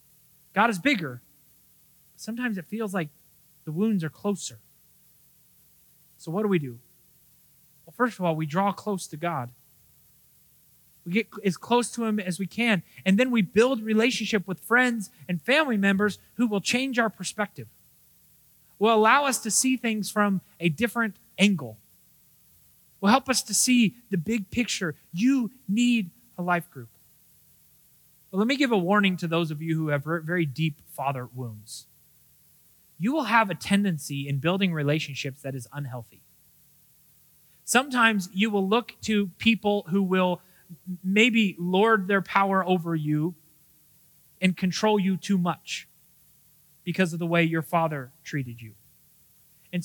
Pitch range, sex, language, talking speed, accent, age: 150-210 Hz, male, English, 155 wpm, American, 30-49